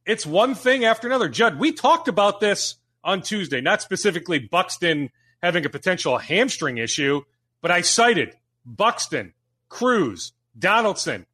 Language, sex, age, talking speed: English, male, 40-59, 140 wpm